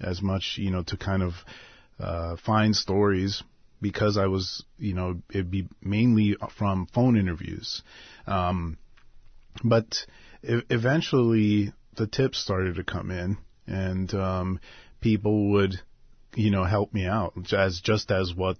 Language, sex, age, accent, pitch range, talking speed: English, male, 30-49, American, 90-105 Hz, 145 wpm